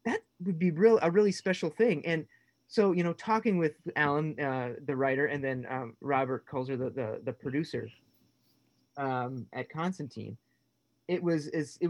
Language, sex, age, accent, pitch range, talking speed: English, male, 30-49, American, 130-165 Hz, 165 wpm